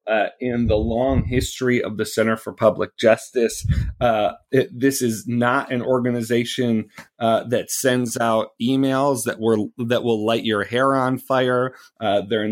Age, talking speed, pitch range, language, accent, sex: 30-49, 165 wpm, 110-130 Hz, English, American, male